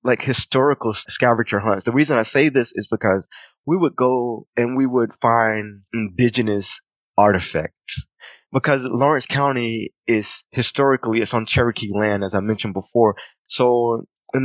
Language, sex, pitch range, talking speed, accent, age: English, male, 105-125 Hz, 145 wpm, American, 20-39